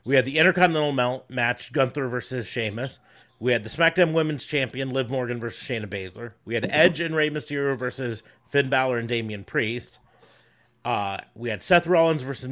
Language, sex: English, male